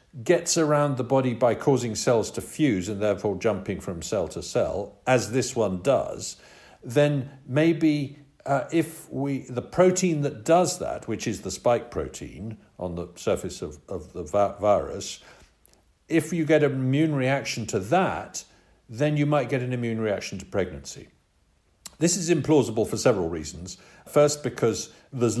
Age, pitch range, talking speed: 50-69, 100-145 Hz, 160 wpm